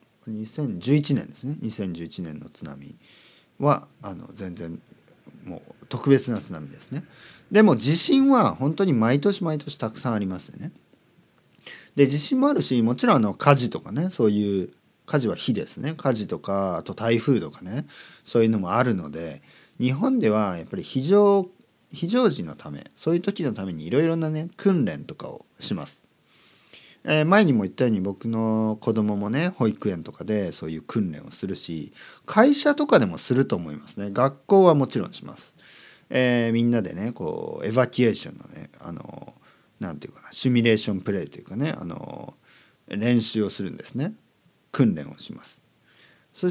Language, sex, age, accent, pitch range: Japanese, male, 40-59, native, 105-160 Hz